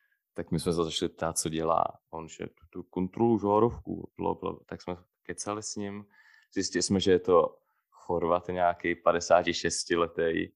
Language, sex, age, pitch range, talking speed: Czech, male, 20-39, 90-105 Hz, 150 wpm